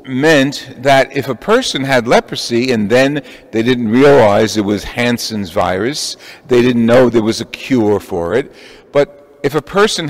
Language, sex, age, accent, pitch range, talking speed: English, male, 50-69, American, 120-155 Hz, 170 wpm